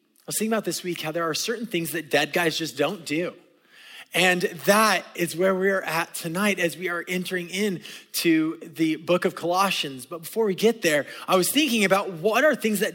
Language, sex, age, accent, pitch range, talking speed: English, male, 20-39, American, 160-200 Hz, 220 wpm